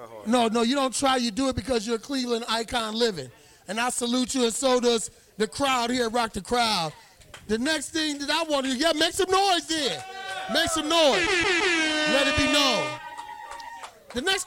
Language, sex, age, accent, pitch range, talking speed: English, male, 40-59, American, 215-280 Hz, 205 wpm